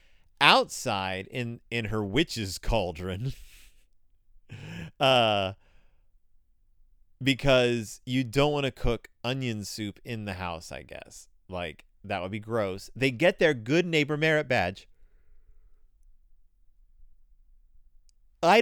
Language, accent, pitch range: English, American, 95-140 Hz